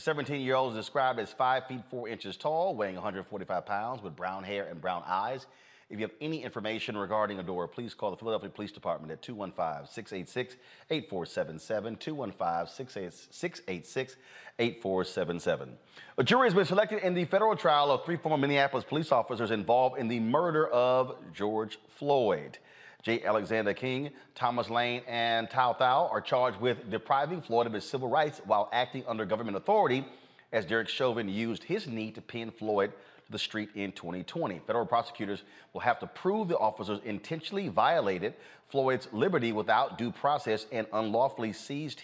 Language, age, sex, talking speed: English, 30-49, male, 155 wpm